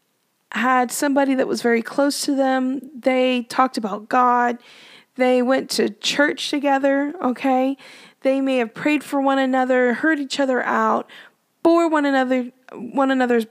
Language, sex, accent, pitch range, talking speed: English, female, American, 235-275 Hz, 150 wpm